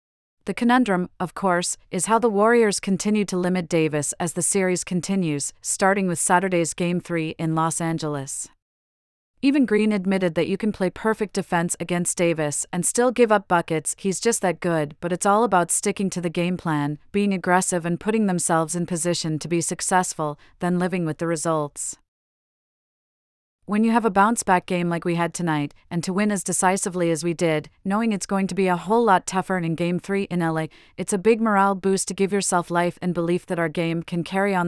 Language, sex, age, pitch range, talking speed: English, female, 40-59, 165-200 Hz, 200 wpm